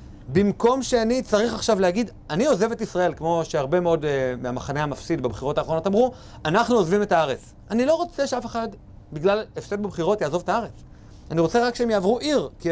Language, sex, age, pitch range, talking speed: Hebrew, male, 40-59, 140-210 Hz, 190 wpm